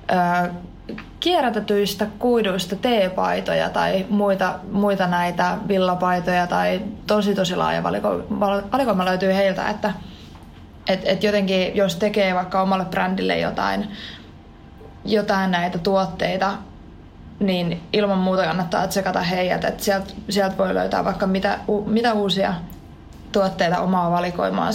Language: Finnish